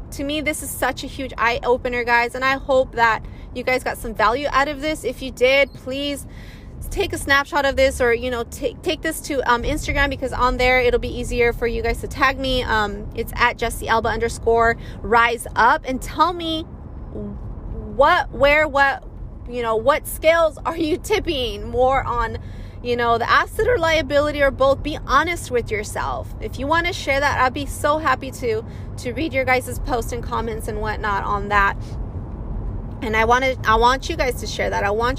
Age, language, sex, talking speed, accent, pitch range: 20-39, English, female, 205 wpm, American, 235-290 Hz